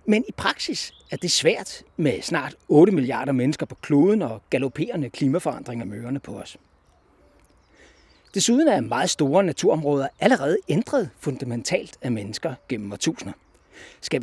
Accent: native